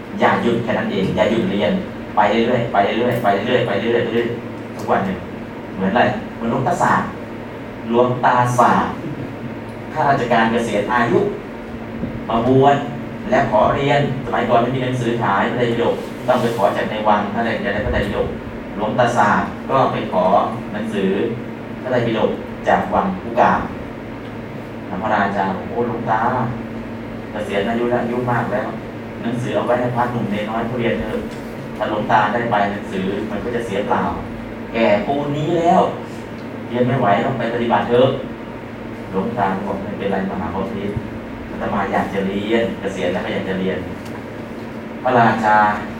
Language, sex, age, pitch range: Thai, male, 30-49, 110-120 Hz